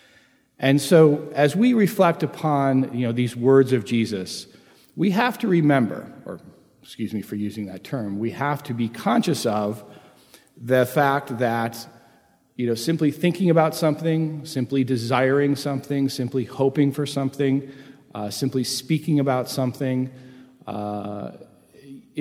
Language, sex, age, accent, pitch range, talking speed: English, male, 40-59, American, 115-140 Hz, 140 wpm